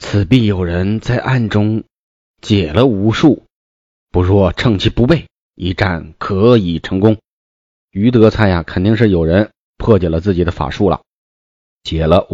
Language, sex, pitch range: Chinese, male, 85-110 Hz